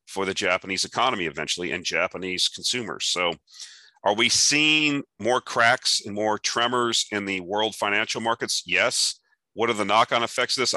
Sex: male